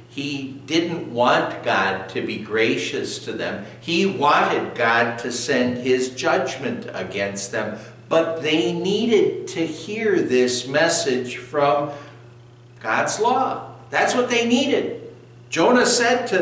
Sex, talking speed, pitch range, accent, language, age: male, 130 wpm, 120-170 Hz, American, English, 60-79